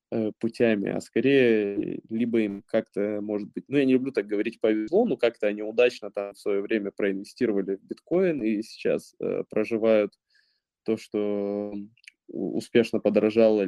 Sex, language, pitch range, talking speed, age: male, Russian, 105-120 Hz, 145 wpm, 20-39